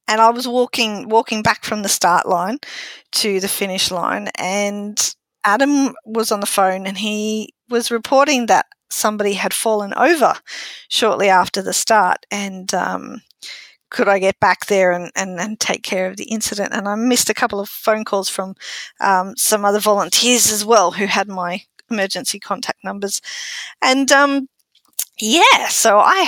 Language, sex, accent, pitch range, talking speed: English, female, Australian, 200-255 Hz, 170 wpm